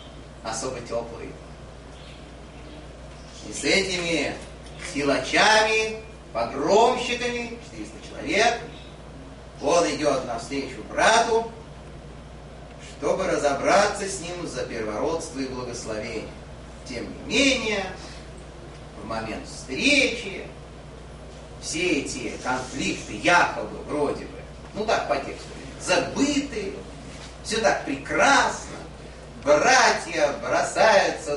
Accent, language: native, Russian